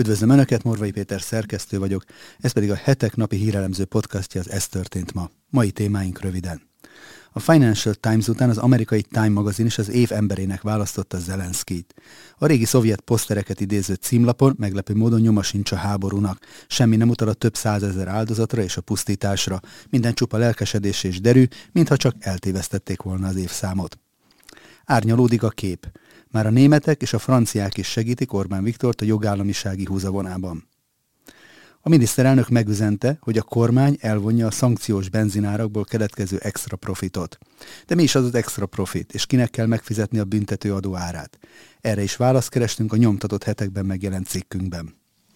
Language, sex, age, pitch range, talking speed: Hungarian, male, 30-49, 95-115 Hz, 155 wpm